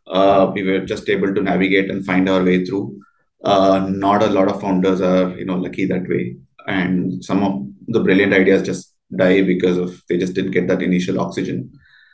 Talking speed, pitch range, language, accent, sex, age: 205 wpm, 95-110 Hz, English, Indian, male, 20-39